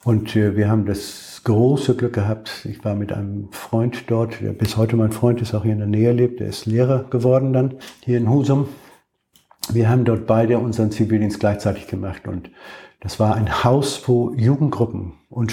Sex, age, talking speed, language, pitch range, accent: male, 60-79, 190 wpm, German, 100-120 Hz, German